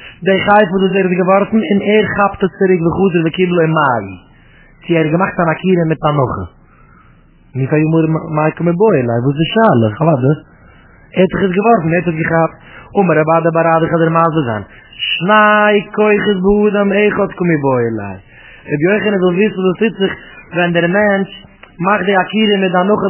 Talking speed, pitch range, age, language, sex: 90 wpm, 165-205 Hz, 30-49, English, male